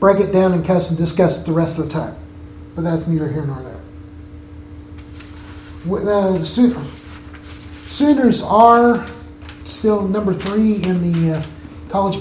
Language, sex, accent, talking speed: English, male, American, 155 wpm